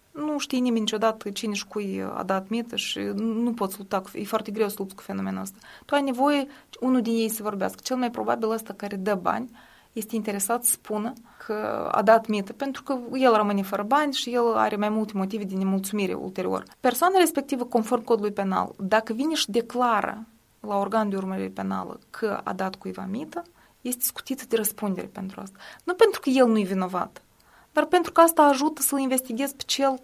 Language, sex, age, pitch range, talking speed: Romanian, female, 20-39, 210-265 Hz, 200 wpm